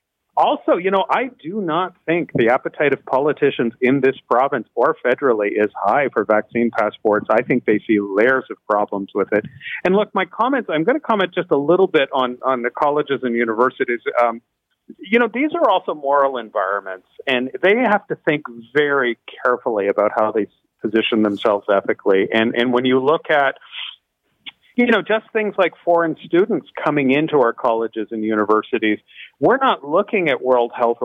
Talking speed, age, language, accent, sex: 180 wpm, 40-59, English, American, male